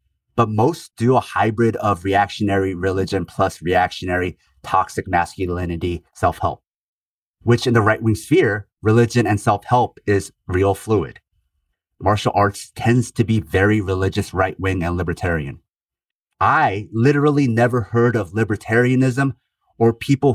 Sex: male